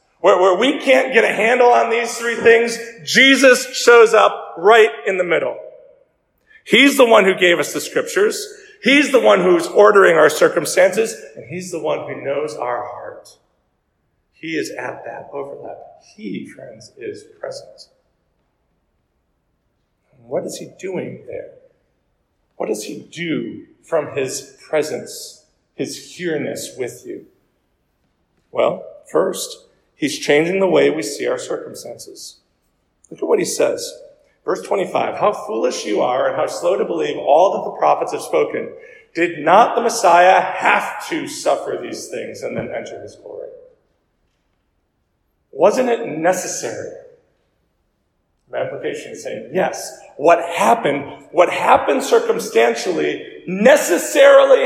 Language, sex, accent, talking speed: English, male, American, 135 wpm